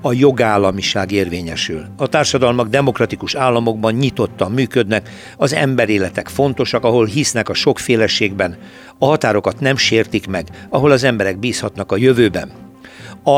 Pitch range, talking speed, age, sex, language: 105-130 Hz, 125 wpm, 60-79, male, Hungarian